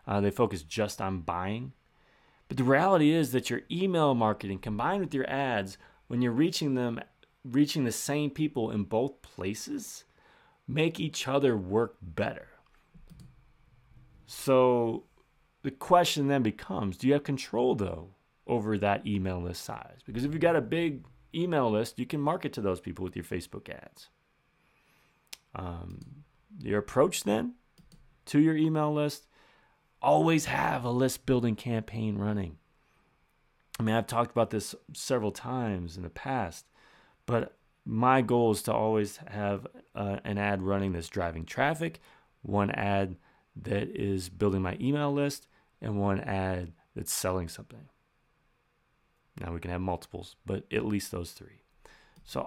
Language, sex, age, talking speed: English, male, 30-49, 150 wpm